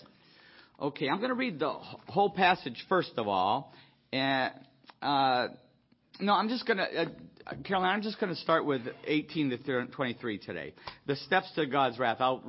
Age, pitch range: 50-69, 130-185 Hz